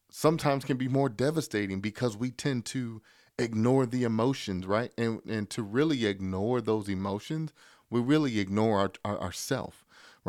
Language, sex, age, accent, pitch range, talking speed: English, male, 40-59, American, 95-115 Hz, 150 wpm